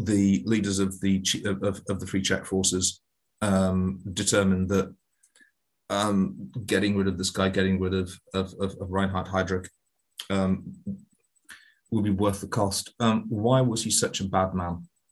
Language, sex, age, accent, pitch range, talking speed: English, male, 30-49, British, 95-115 Hz, 160 wpm